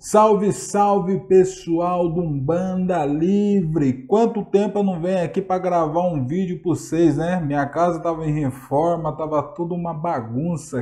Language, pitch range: Portuguese, 135-185 Hz